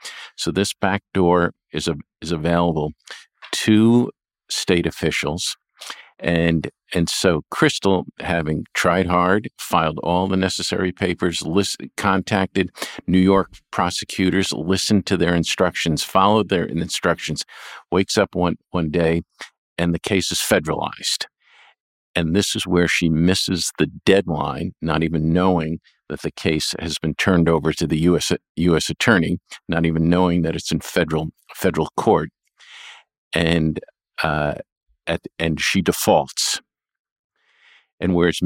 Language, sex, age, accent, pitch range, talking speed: English, male, 50-69, American, 80-95 Hz, 135 wpm